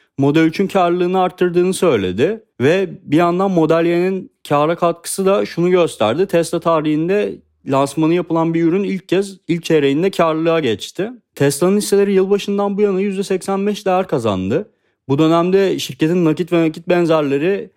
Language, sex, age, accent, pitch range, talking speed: Turkish, male, 40-59, native, 125-180 Hz, 140 wpm